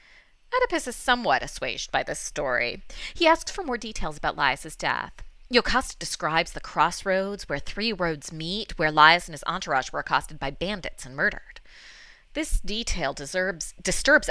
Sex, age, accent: female, 30-49, American